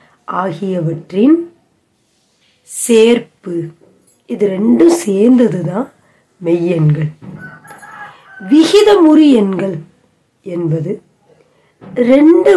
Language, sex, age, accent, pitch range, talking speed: Tamil, female, 30-49, native, 170-260 Hz, 50 wpm